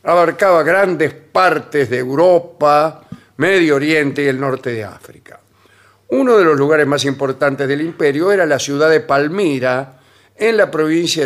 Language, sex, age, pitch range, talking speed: Spanish, male, 50-69, 115-155 Hz, 150 wpm